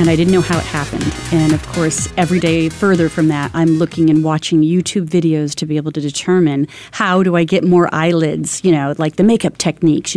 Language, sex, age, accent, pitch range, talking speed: English, female, 30-49, American, 160-195 Hz, 230 wpm